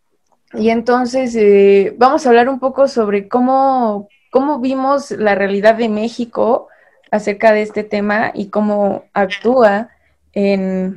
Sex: female